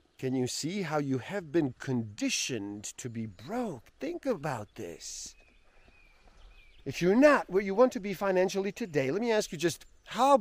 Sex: male